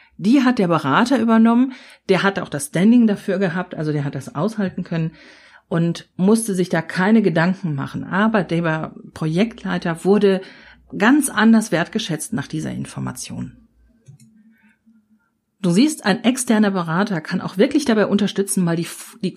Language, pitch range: German, 170-220 Hz